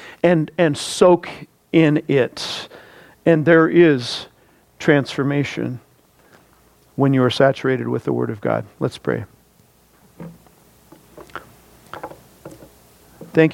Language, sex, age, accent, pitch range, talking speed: English, male, 50-69, American, 135-160 Hz, 95 wpm